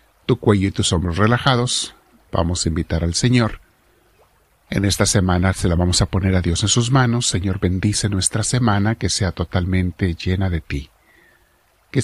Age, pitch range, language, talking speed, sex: 50-69, 90-125 Hz, Spanish, 175 wpm, male